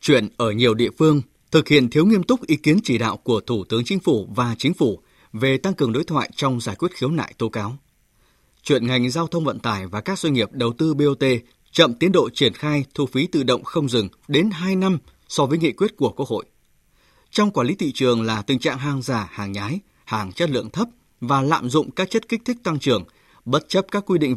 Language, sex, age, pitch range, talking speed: Vietnamese, male, 20-39, 120-170 Hz, 240 wpm